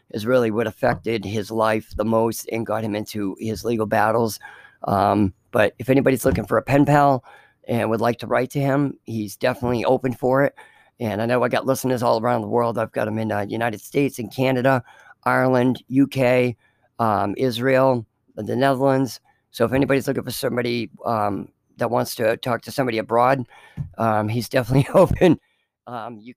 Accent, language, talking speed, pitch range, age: American, English, 185 wpm, 115-130 Hz, 40-59